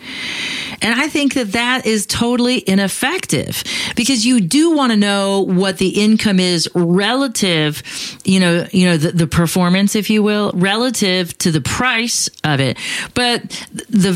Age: 40-59